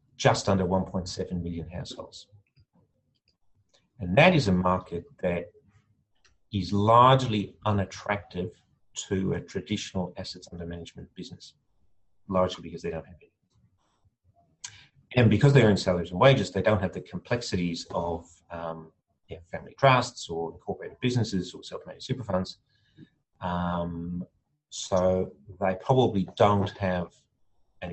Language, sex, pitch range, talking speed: English, male, 90-110 Hz, 125 wpm